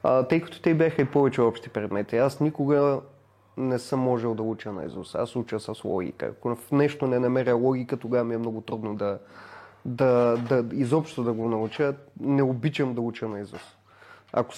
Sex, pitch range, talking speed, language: male, 115-165 Hz, 195 wpm, Bulgarian